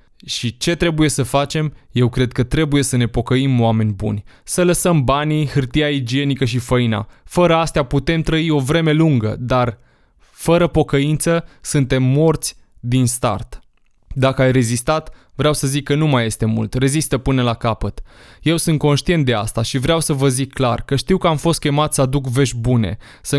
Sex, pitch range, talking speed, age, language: male, 120-155 Hz, 185 wpm, 20-39, Romanian